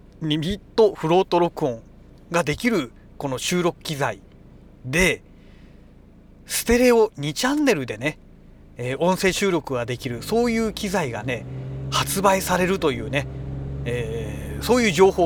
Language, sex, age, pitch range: Japanese, male, 40-59, 140-190 Hz